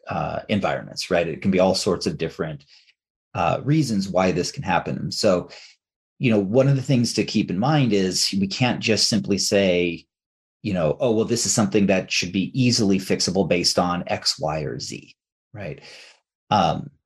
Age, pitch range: 30-49, 95-115 Hz